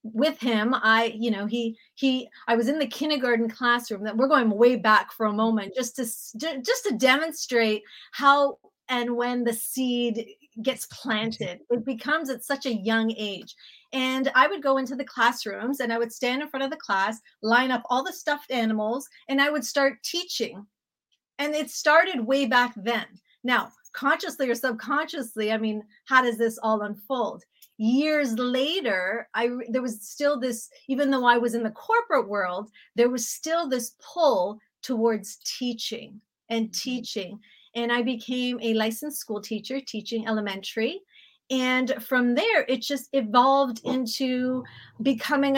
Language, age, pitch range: English, 30-49, 225-270 Hz